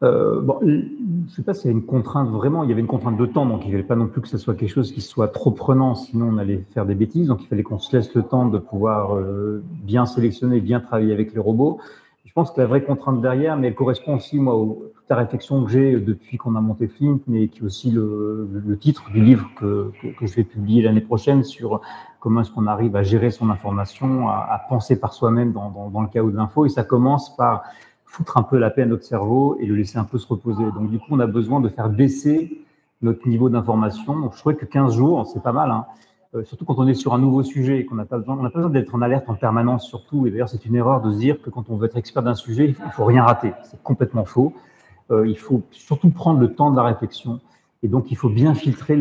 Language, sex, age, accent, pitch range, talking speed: French, male, 40-59, French, 110-135 Hz, 265 wpm